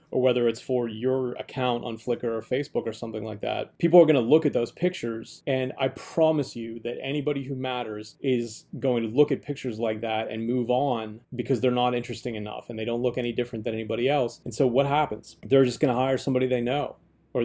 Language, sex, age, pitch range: English, male, 30-49, 115-130 Hz